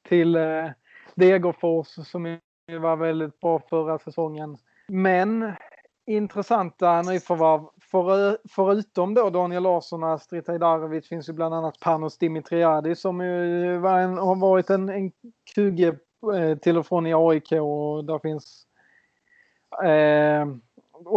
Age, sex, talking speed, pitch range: 30-49, male, 115 wpm, 155-180 Hz